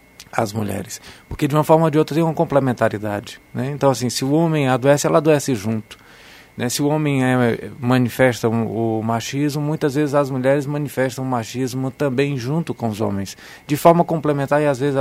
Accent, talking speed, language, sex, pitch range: Brazilian, 190 wpm, Portuguese, male, 120-150 Hz